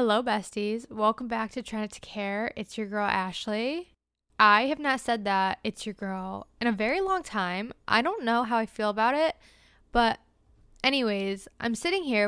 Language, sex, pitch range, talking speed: English, female, 205-245 Hz, 185 wpm